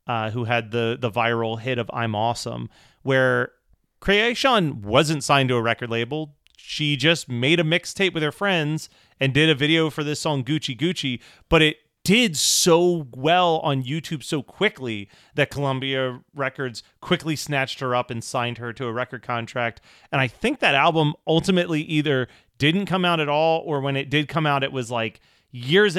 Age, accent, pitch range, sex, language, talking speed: 30-49, American, 125-160 Hz, male, English, 185 wpm